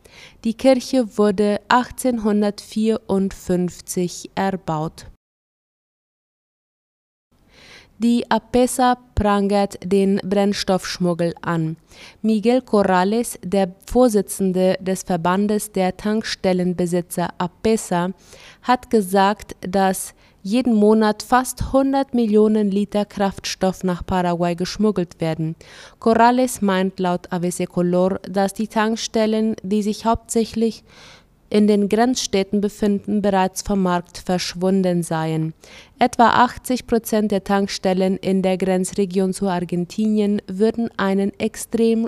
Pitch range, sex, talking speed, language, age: 180-215 Hz, female, 95 wpm, German, 20-39